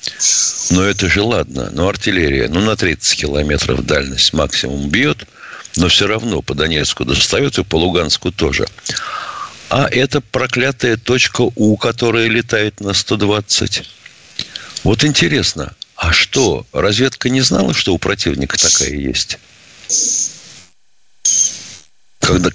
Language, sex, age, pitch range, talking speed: Russian, male, 60-79, 85-125 Hz, 120 wpm